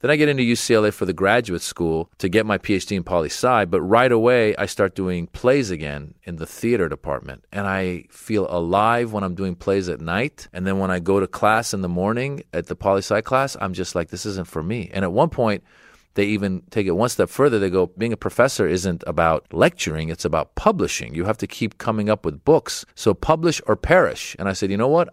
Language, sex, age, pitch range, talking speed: English, male, 40-59, 90-110 Hz, 235 wpm